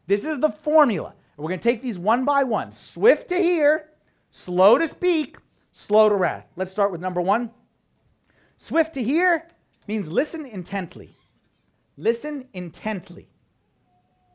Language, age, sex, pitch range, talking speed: English, 40-59, male, 205-310 Hz, 140 wpm